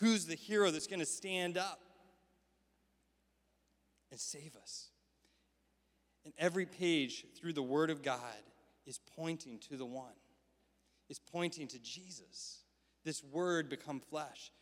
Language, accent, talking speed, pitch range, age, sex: English, American, 130 wpm, 135-180 Hz, 30-49, male